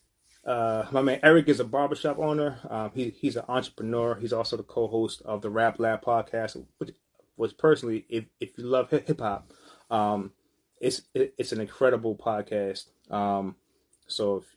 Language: English